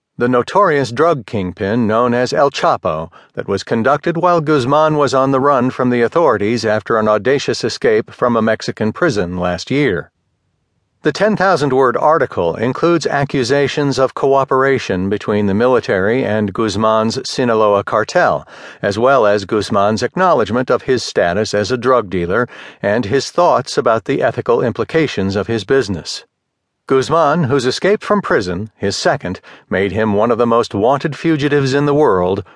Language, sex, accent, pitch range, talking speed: English, male, American, 110-150 Hz, 155 wpm